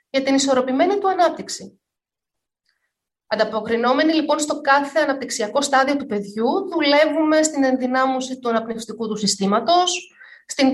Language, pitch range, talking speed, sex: Greek, 245-320 Hz, 115 wpm, female